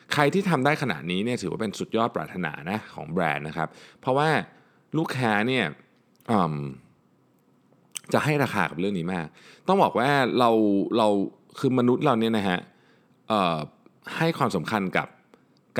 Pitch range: 90-130 Hz